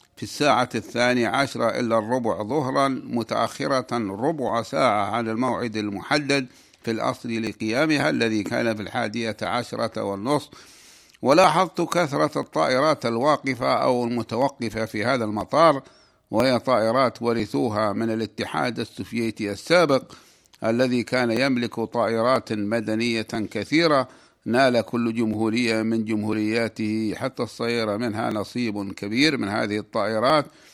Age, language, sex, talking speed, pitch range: 60-79, Arabic, male, 110 wpm, 110-130 Hz